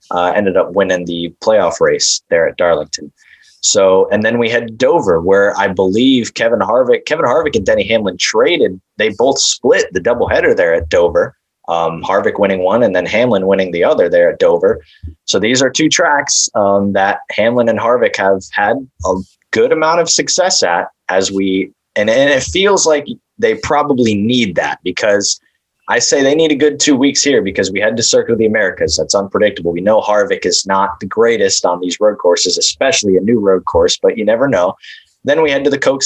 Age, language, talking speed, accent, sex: 20-39, English, 205 wpm, American, male